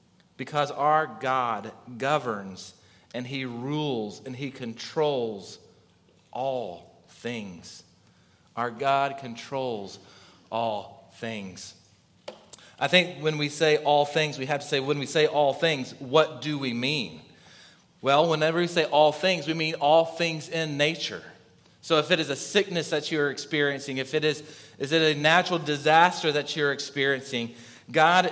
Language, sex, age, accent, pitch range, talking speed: English, male, 30-49, American, 125-160 Hz, 150 wpm